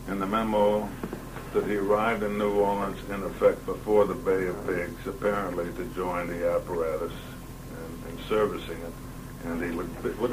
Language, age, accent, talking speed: English, 60-79, American, 180 wpm